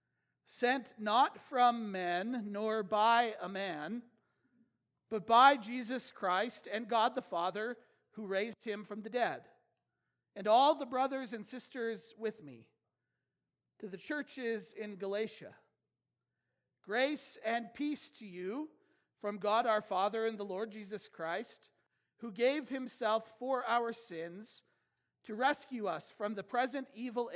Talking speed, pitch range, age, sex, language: 135 wpm, 185-235 Hz, 40-59, male, English